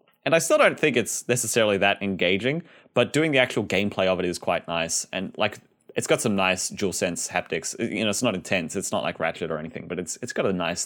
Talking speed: 250 wpm